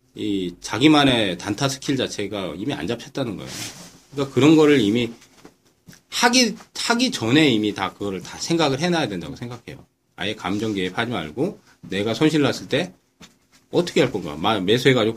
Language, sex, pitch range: Korean, male, 100-150 Hz